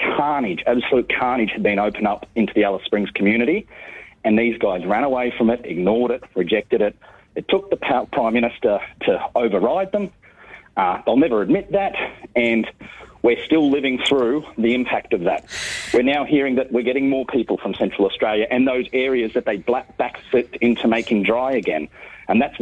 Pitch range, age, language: 120-160 Hz, 40-59, English